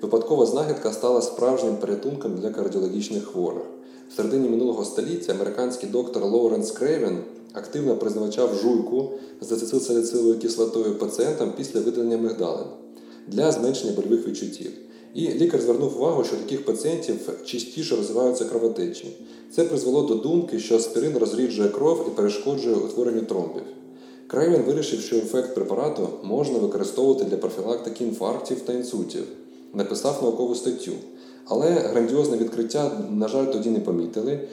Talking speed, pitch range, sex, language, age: 130 wpm, 110-130 Hz, male, Ukrainian, 20-39